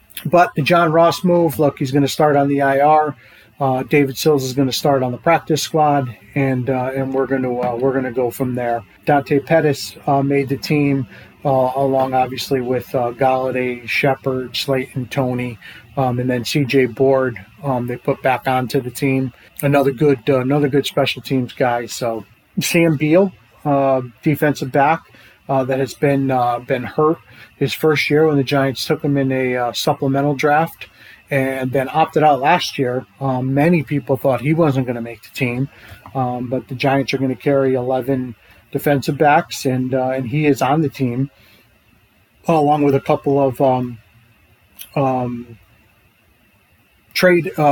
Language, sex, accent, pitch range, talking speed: English, male, American, 125-145 Hz, 180 wpm